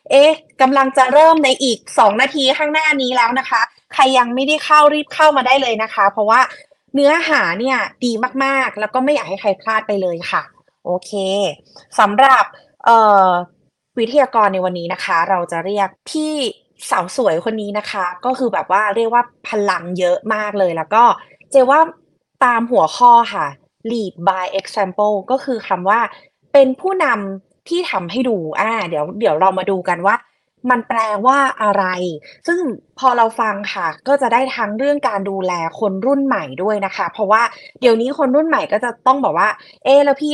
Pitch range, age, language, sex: 190-265 Hz, 20-39, Thai, female